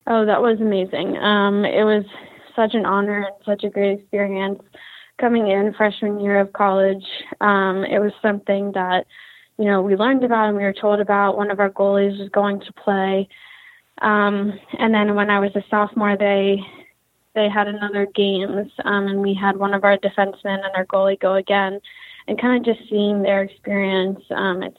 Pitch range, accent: 195-205 Hz, American